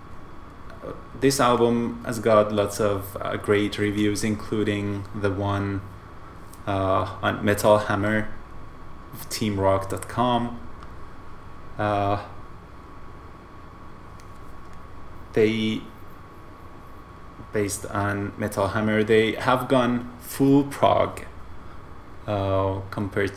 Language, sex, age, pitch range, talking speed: English, male, 20-39, 95-110 Hz, 75 wpm